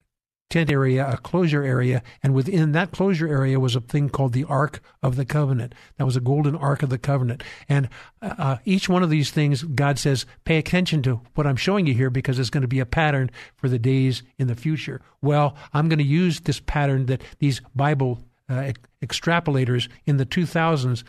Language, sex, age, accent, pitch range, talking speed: English, male, 50-69, American, 130-155 Hz, 205 wpm